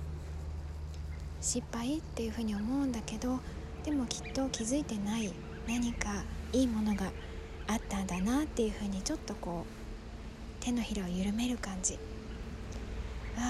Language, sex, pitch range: Japanese, female, 200-250 Hz